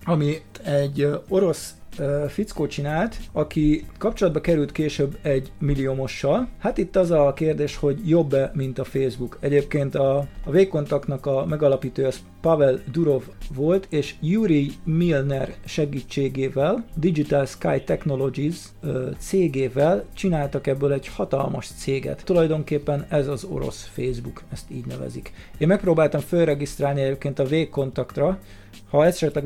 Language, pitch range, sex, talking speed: Hungarian, 135-160 Hz, male, 125 wpm